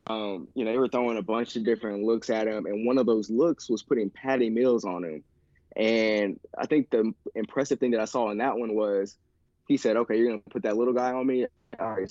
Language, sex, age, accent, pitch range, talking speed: English, male, 20-39, American, 105-115 Hz, 250 wpm